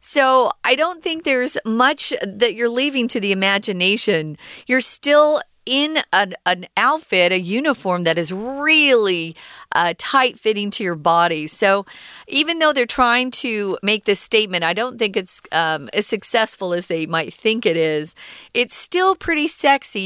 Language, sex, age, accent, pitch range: Chinese, female, 40-59, American, 185-275 Hz